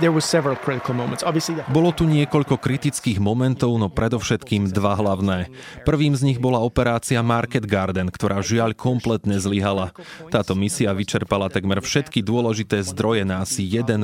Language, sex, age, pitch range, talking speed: Slovak, male, 30-49, 100-125 Hz, 130 wpm